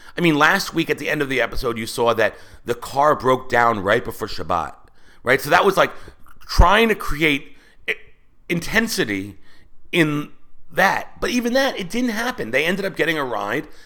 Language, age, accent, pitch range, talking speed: English, 40-59, American, 95-130 Hz, 185 wpm